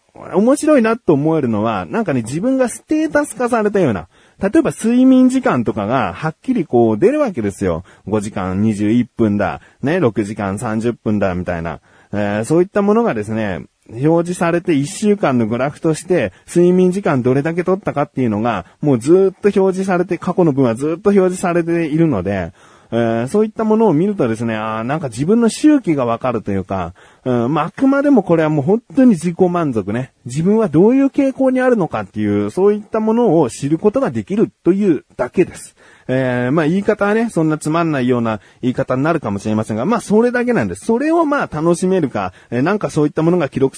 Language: Japanese